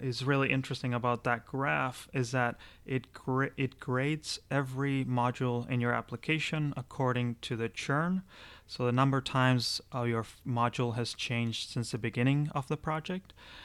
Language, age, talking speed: English, 30-49, 155 wpm